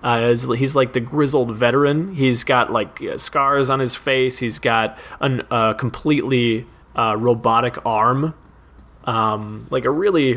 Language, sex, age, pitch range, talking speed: English, male, 20-39, 115-145 Hz, 145 wpm